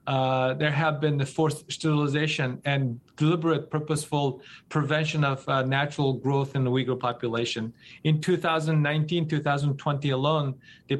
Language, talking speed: English, 130 wpm